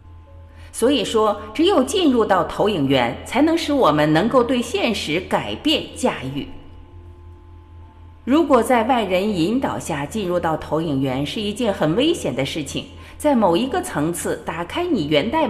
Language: Chinese